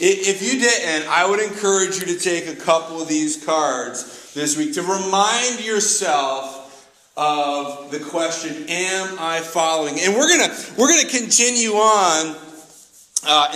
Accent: American